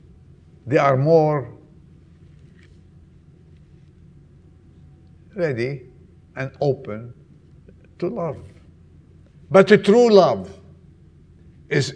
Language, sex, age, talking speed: English, male, 50-69, 65 wpm